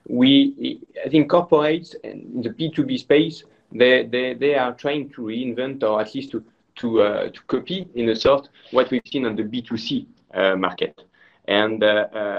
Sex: male